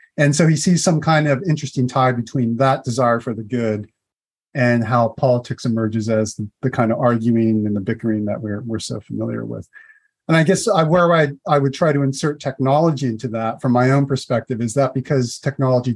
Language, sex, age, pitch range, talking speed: English, male, 40-59, 115-140 Hz, 210 wpm